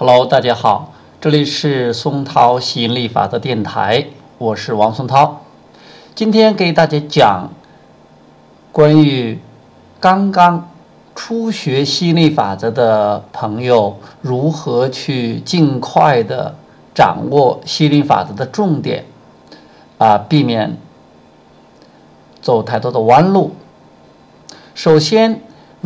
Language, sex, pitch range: Chinese, male, 115-160 Hz